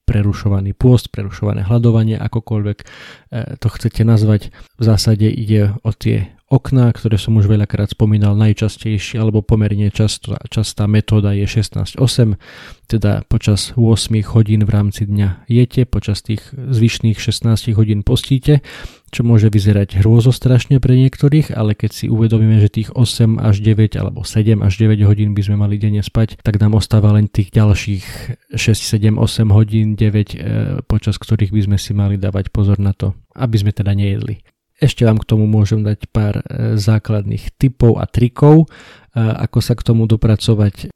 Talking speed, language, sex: 160 wpm, Slovak, male